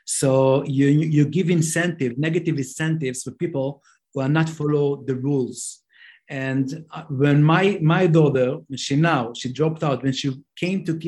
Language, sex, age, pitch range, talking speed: English, male, 50-69, 140-175 Hz, 160 wpm